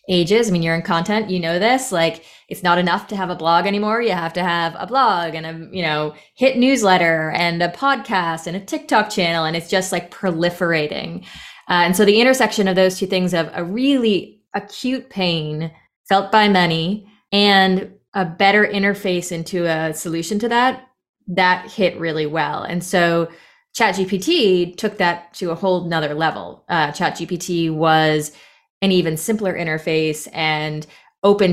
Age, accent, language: 20-39, American, English